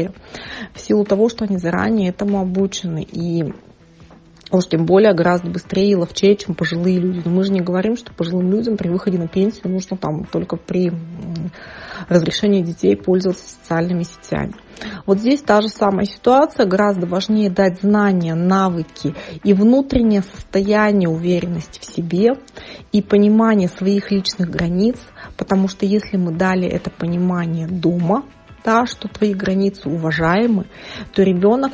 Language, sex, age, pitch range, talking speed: Russian, female, 30-49, 175-210 Hz, 140 wpm